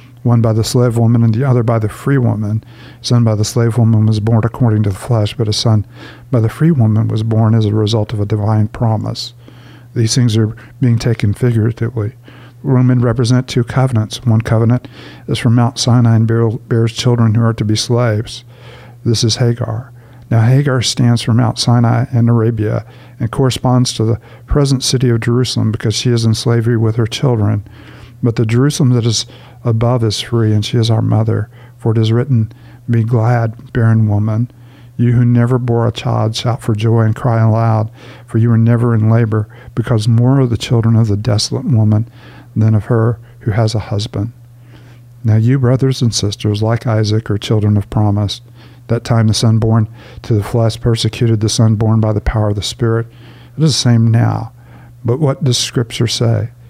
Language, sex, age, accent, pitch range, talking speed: English, male, 50-69, American, 110-120 Hz, 195 wpm